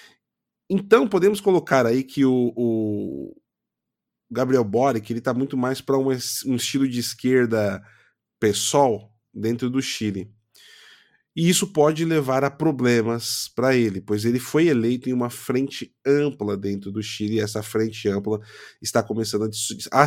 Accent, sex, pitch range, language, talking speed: Brazilian, male, 105-130 Hz, Portuguese, 145 wpm